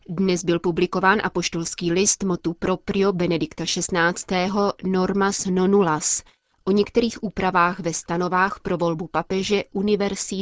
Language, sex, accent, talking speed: Czech, female, native, 115 wpm